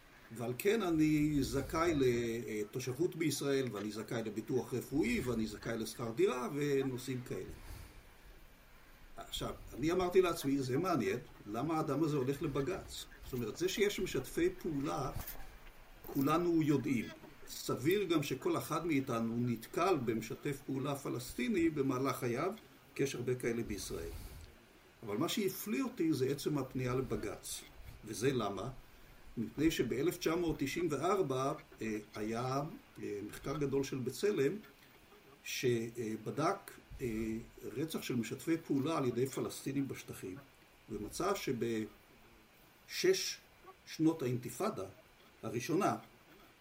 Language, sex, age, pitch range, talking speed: Hebrew, male, 50-69, 115-160 Hz, 105 wpm